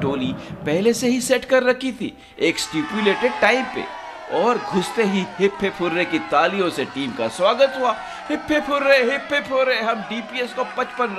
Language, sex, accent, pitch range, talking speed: Hindi, male, native, 160-260 Hz, 175 wpm